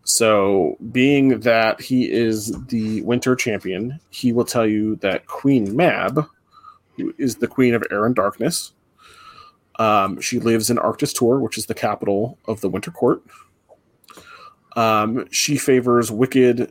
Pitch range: 110-135 Hz